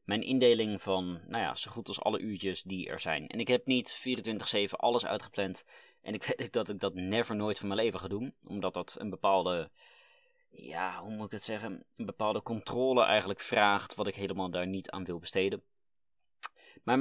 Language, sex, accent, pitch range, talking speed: Dutch, male, Dutch, 95-115 Hz, 200 wpm